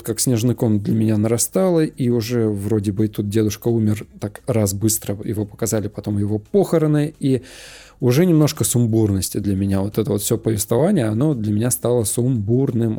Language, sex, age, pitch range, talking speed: Russian, male, 20-39, 110-140 Hz, 175 wpm